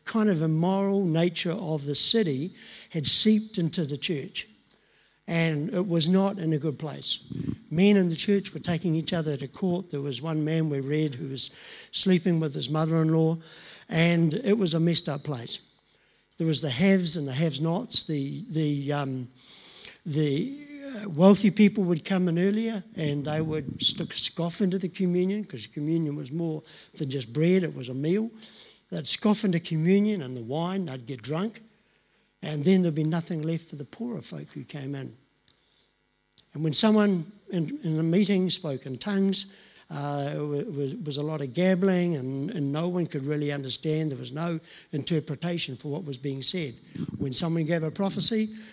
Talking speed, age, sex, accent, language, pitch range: 185 wpm, 60-79, male, Australian, English, 150-195 Hz